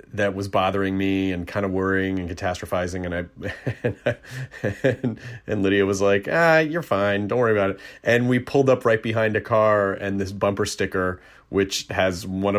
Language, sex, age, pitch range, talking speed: English, male, 30-49, 95-110 Hz, 180 wpm